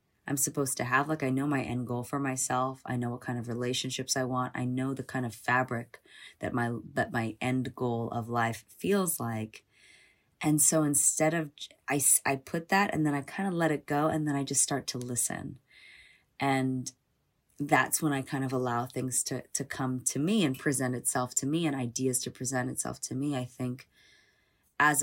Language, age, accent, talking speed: English, 20-39, American, 210 wpm